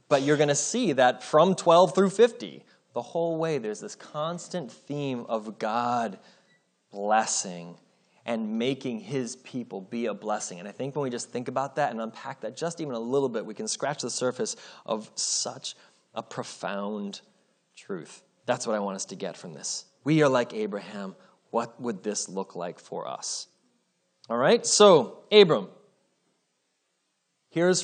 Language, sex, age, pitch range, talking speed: English, male, 20-39, 120-185 Hz, 170 wpm